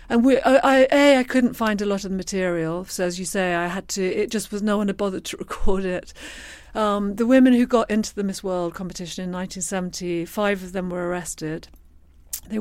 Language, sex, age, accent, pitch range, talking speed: English, female, 40-59, British, 180-220 Hz, 225 wpm